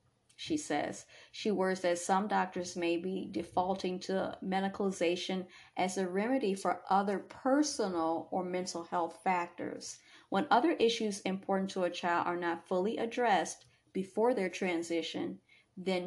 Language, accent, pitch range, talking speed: English, American, 175-200 Hz, 140 wpm